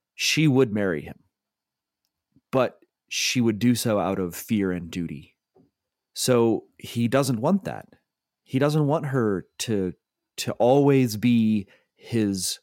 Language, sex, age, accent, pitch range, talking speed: English, male, 30-49, American, 100-130 Hz, 135 wpm